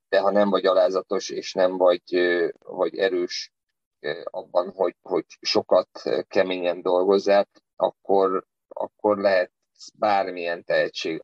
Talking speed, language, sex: 110 wpm, Hungarian, male